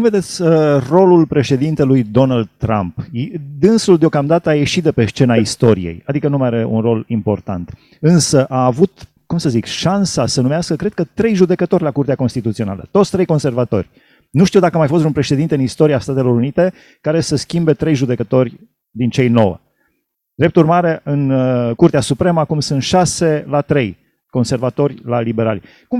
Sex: male